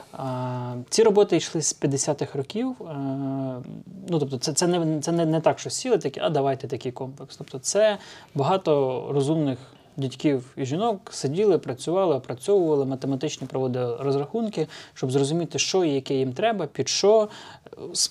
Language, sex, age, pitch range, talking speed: Ukrainian, male, 20-39, 135-165 Hz, 155 wpm